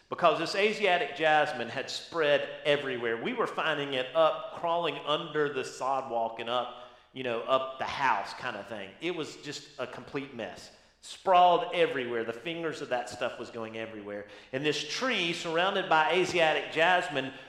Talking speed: 170 wpm